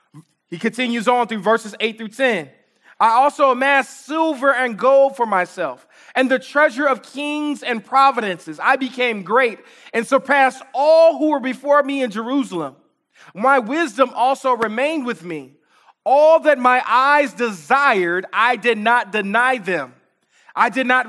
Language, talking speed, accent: English, 155 wpm, American